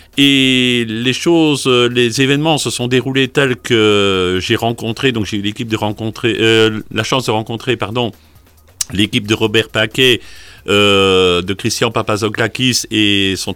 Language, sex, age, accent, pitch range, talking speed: French, male, 50-69, French, 100-135 Hz, 150 wpm